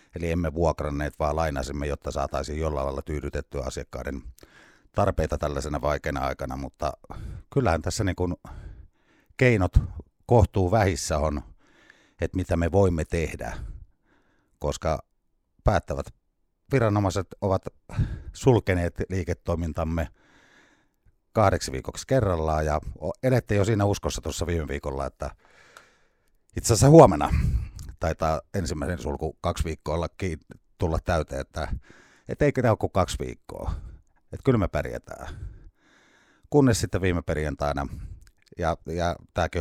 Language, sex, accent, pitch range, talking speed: Finnish, male, native, 75-95 Hz, 115 wpm